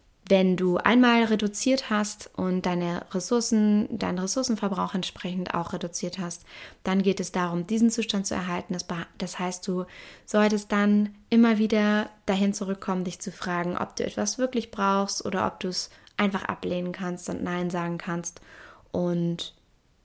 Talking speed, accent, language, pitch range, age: 155 wpm, German, German, 185-220 Hz, 20-39